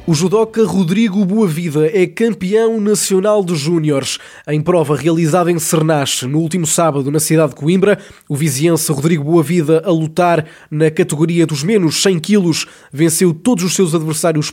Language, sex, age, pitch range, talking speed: Portuguese, male, 20-39, 155-185 Hz, 155 wpm